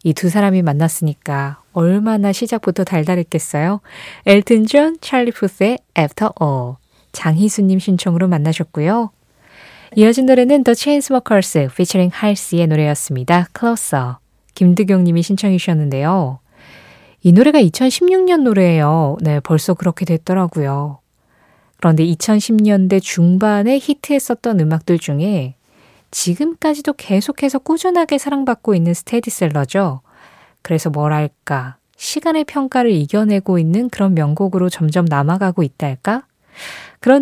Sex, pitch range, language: female, 155-230 Hz, Korean